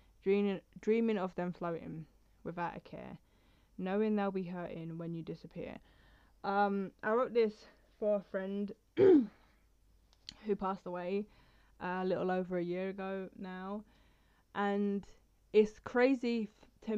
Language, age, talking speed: English, 10-29, 130 wpm